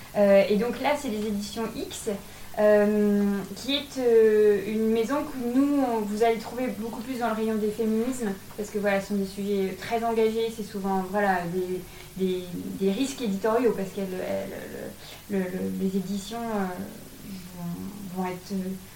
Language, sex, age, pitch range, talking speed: French, female, 20-39, 195-230 Hz, 155 wpm